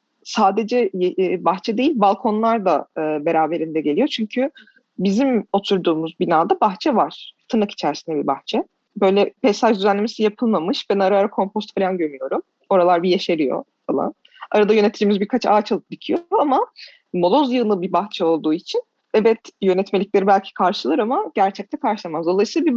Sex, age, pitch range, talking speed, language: female, 30-49, 180-245 Hz, 140 wpm, Turkish